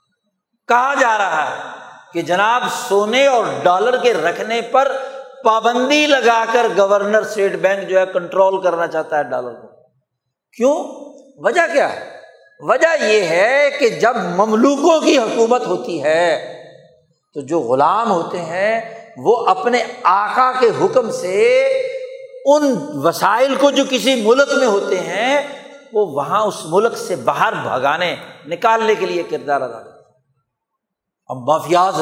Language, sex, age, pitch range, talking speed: Urdu, male, 60-79, 185-285 Hz, 135 wpm